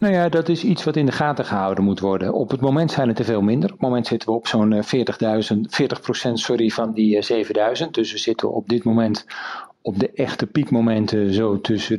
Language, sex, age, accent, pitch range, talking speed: Dutch, male, 40-59, Dutch, 105-125 Hz, 225 wpm